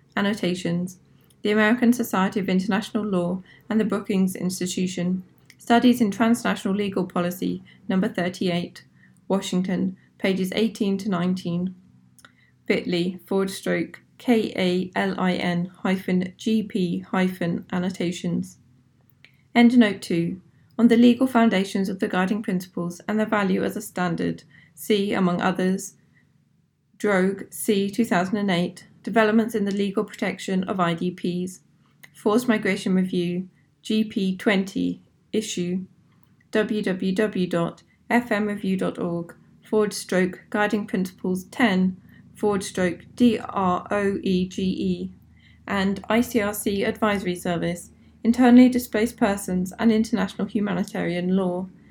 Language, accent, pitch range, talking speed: English, British, 180-215 Hz, 100 wpm